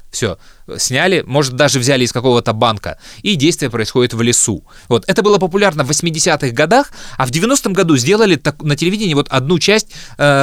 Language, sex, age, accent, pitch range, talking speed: Russian, male, 20-39, native, 120-170 Hz, 175 wpm